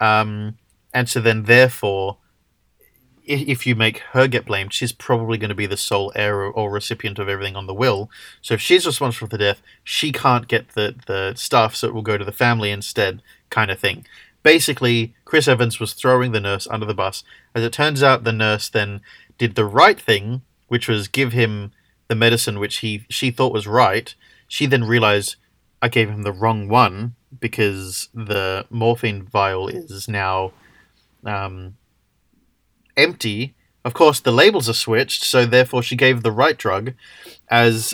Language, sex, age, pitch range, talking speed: English, male, 30-49, 105-120 Hz, 180 wpm